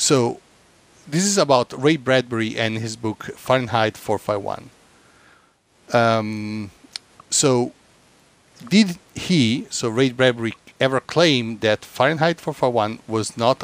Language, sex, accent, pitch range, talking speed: English, male, Italian, 105-135 Hz, 110 wpm